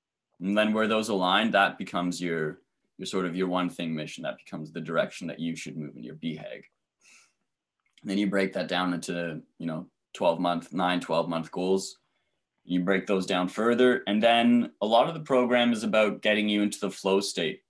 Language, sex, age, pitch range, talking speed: English, male, 20-39, 85-105 Hz, 205 wpm